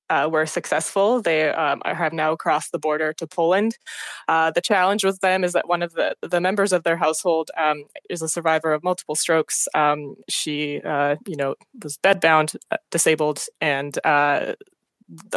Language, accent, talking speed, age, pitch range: English, American, 170 wpm, 20-39, 155-190 Hz